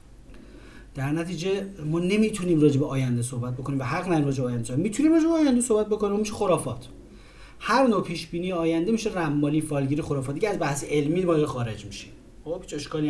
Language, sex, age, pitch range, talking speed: Persian, male, 30-49, 130-170 Hz, 185 wpm